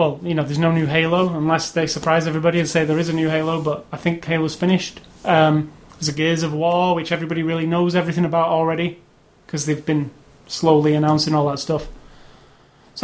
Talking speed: 205 wpm